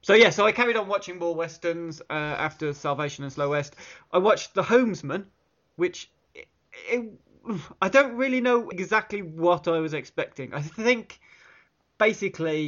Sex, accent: male, British